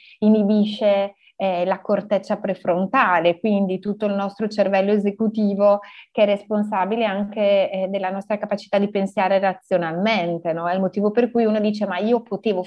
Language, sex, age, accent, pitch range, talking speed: Italian, female, 30-49, native, 185-225 Hz, 155 wpm